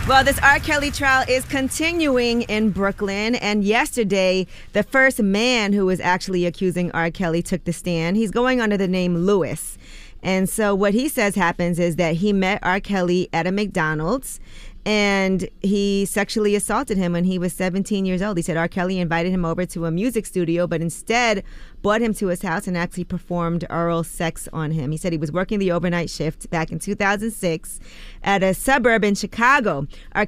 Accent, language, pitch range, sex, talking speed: American, English, 165-205 Hz, female, 190 wpm